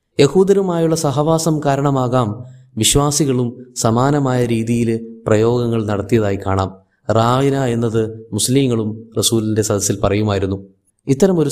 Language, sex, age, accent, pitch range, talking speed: Malayalam, male, 20-39, native, 110-140 Hz, 85 wpm